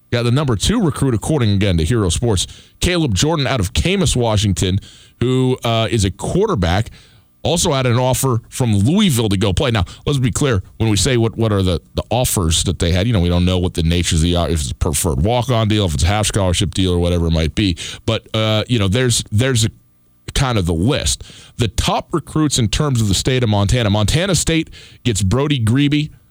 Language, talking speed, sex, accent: English, 230 wpm, male, American